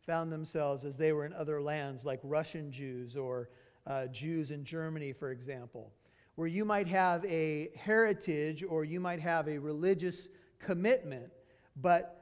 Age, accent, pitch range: 50-69, American, 150-185 Hz